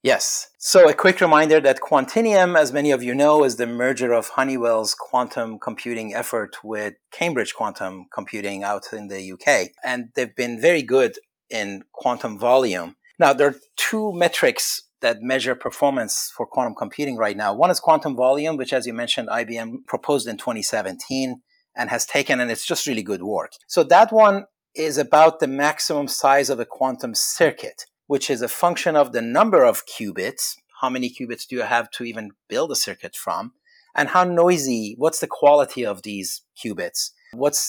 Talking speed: 180 wpm